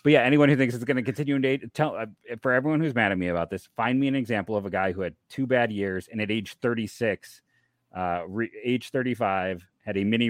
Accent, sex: American, male